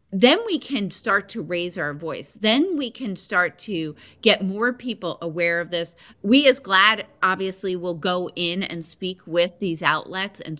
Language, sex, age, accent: English, female, 30-49, American